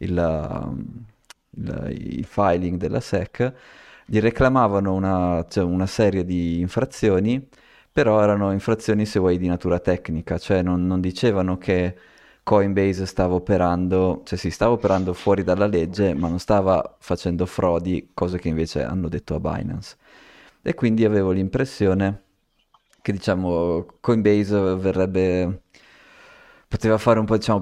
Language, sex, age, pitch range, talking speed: Italian, male, 20-39, 90-105 Hz, 135 wpm